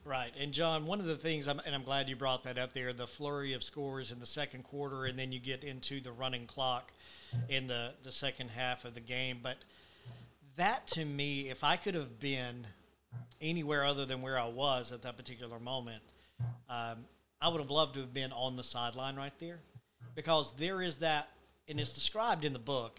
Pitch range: 125-150 Hz